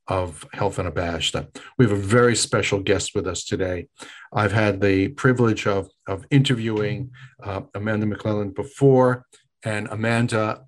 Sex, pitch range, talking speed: male, 100-115 Hz, 145 wpm